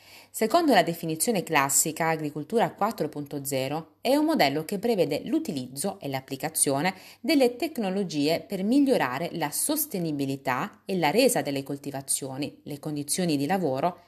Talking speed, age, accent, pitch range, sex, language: 125 wpm, 30-49, native, 145-220 Hz, female, Italian